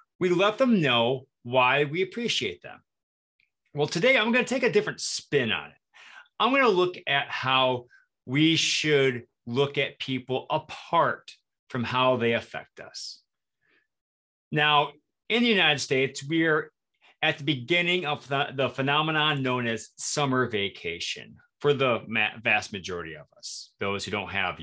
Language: English